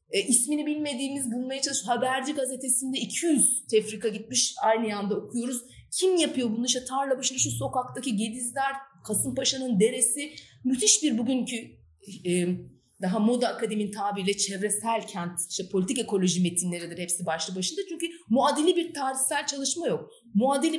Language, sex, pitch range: Turkish, female, 200-265 Hz